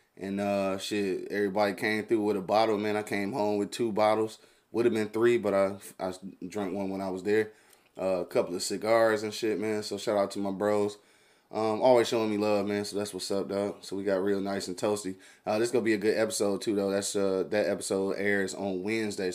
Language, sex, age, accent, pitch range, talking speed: English, male, 20-39, American, 100-110 Hz, 240 wpm